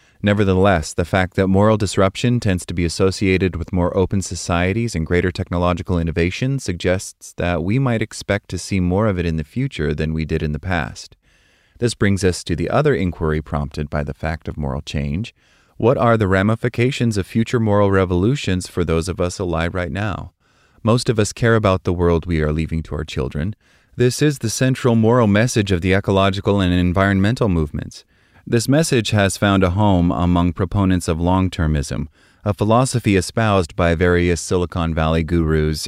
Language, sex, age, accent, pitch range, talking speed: English, male, 30-49, American, 85-105 Hz, 180 wpm